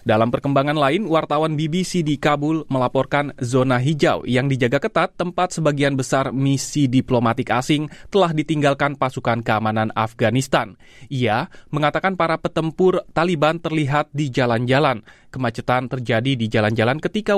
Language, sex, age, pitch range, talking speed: Indonesian, male, 20-39, 120-155 Hz, 130 wpm